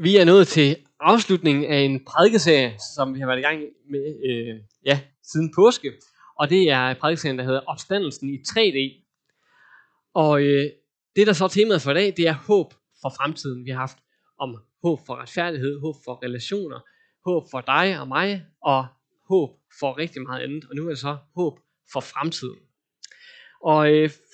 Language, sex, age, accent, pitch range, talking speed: Danish, male, 20-39, native, 135-180 Hz, 180 wpm